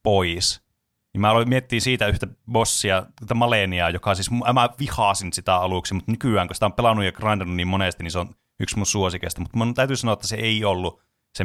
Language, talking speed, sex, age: Finnish, 210 wpm, male, 30-49